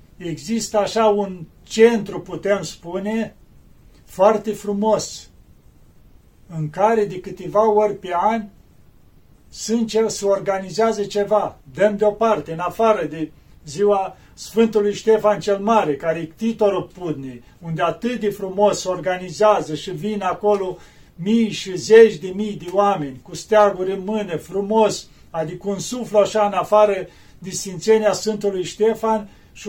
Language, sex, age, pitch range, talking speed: Romanian, male, 40-59, 175-215 Hz, 135 wpm